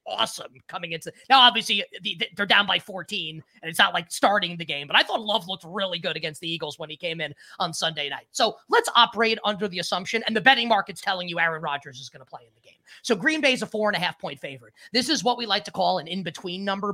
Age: 20-39